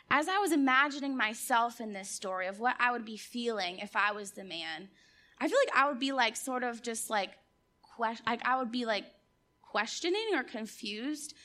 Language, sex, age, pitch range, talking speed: English, female, 20-39, 225-290 Hz, 195 wpm